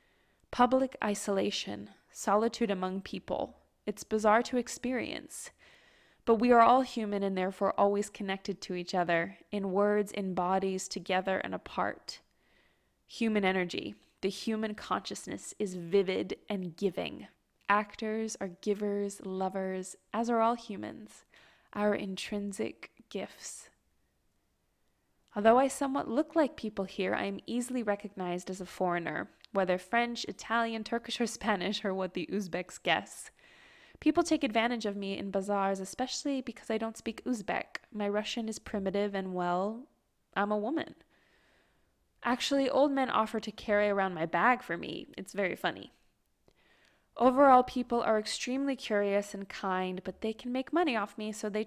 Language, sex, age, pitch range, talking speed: English, female, 20-39, 190-235 Hz, 145 wpm